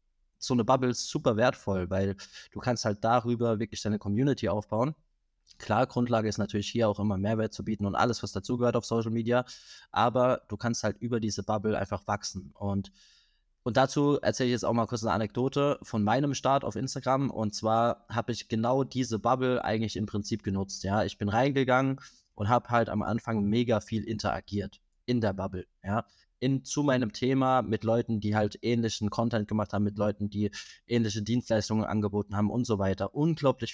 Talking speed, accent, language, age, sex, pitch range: 190 wpm, German, German, 20-39, male, 105-125 Hz